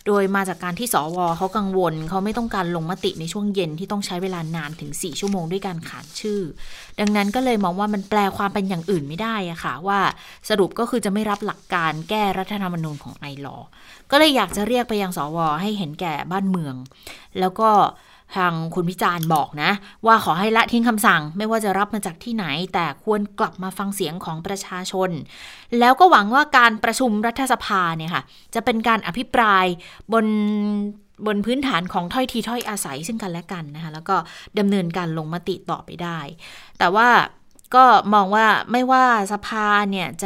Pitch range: 170-215 Hz